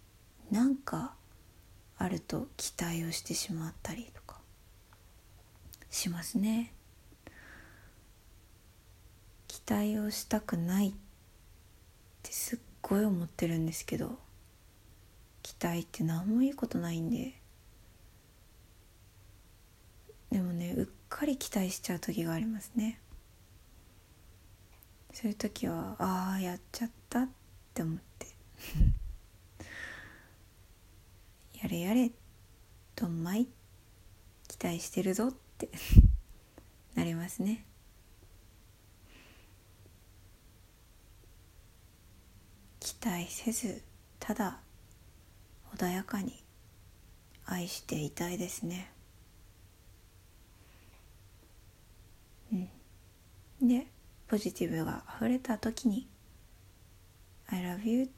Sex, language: female, Japanese